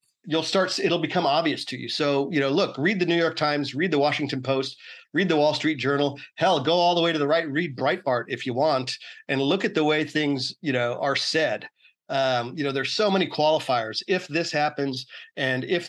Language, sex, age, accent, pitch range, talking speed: English, male, 40-59, American, 135-160 Hz, 225 wpm